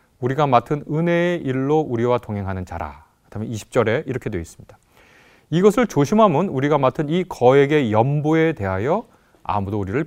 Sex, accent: male, native